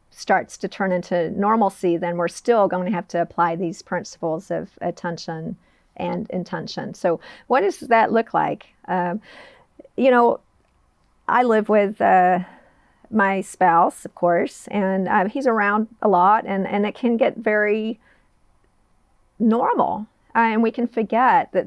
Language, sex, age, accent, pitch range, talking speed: English, female, 40-59, American, 180-220 Hz, 150 wpm